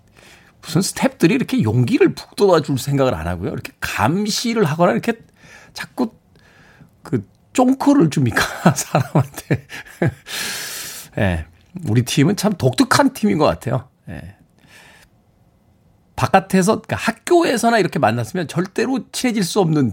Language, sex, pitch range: Korean, male, 115-195 Hz